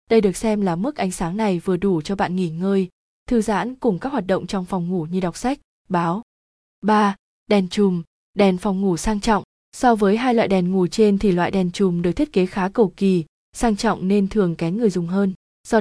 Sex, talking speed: female, 230 wpm